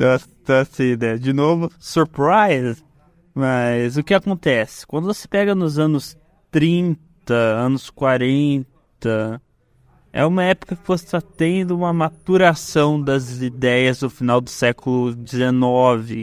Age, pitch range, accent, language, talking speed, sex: 20-39, 120-155 Hz, Brazilian, Portuguese, 125 wpm, male